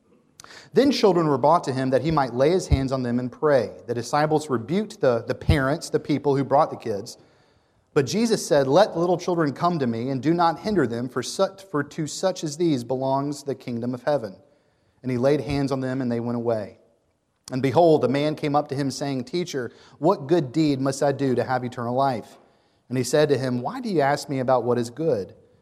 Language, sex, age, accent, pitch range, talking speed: English, male, 30-49, American, 120-155 Hz, 230 wpm